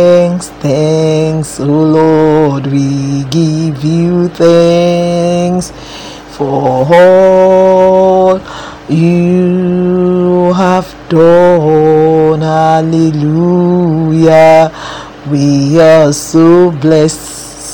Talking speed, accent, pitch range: 60 wpm, Nigerian, 145-175 Hz